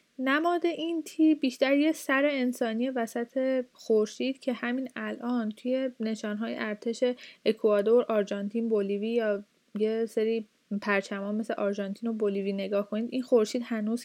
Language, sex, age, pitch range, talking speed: Persian, female, 10-29, 220-265 Hz, 130 wpm